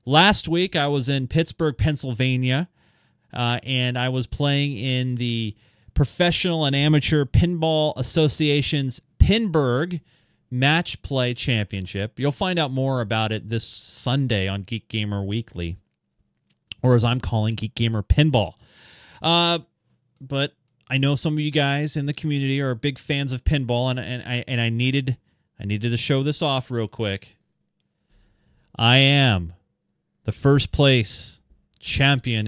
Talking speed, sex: 145 wpm, male